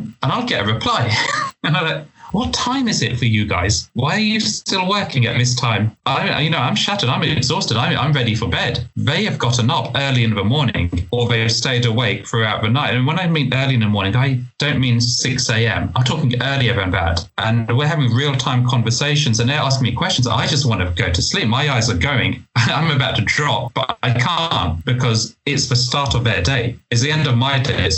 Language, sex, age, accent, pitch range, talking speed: English, male, 30-49, British, 110-130 Hz, 230 wpm